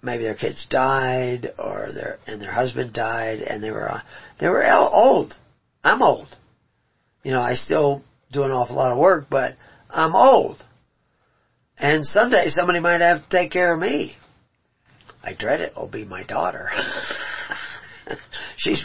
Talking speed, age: 160 wpm, 50-69